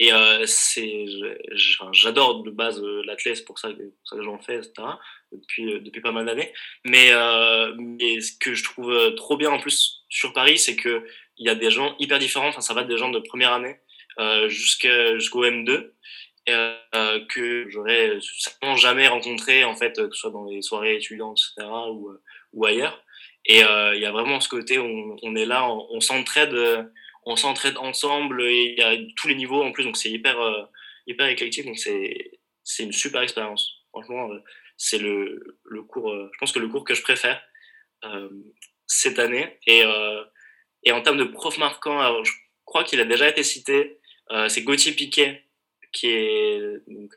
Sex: male